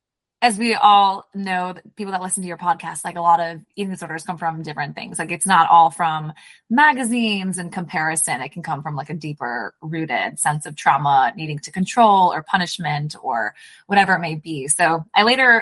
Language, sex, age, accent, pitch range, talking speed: English, female, 20-39, American, 170-215 Hz, 200 wpm